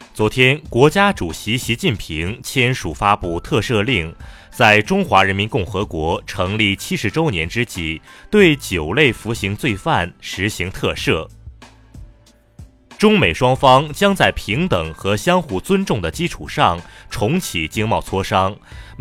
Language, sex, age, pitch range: Chinese, male, 30-49, 90-135 Hz